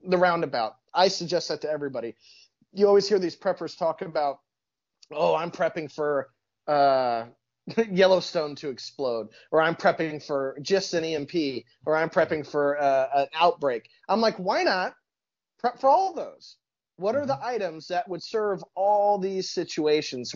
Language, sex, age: English, male, 30-49